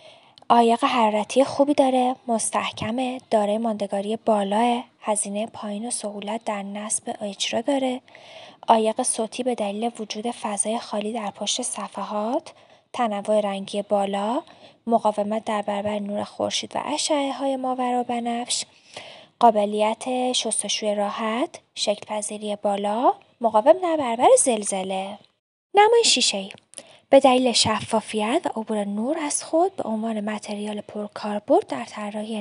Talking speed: 115 wpm